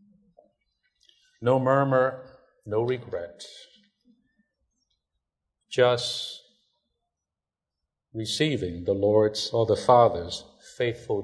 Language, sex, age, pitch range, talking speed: English, male, 50-69, 105-170 Hz, 65 wpm